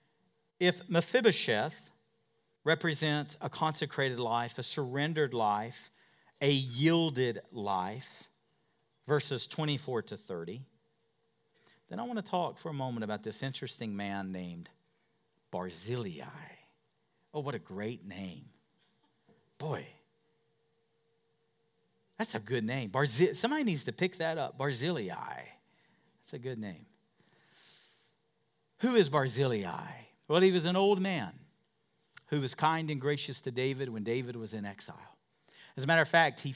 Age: 50-69